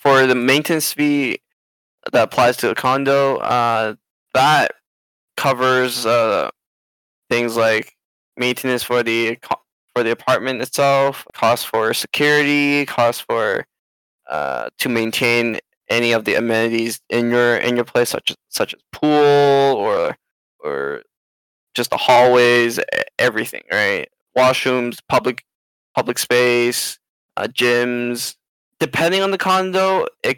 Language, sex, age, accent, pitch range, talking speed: English, male, 10-29, American, 120-145 Hz, 120 wpm